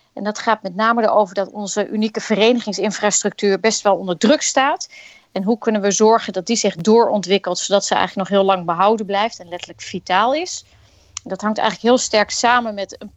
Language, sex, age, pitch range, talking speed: Dutch, female, 30-49, 195-230 Hz, 200 wpm